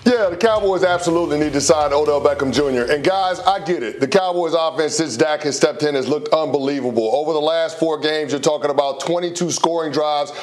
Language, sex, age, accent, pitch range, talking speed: English, male, 40-59, American, 155-190 Hz, 215 wpm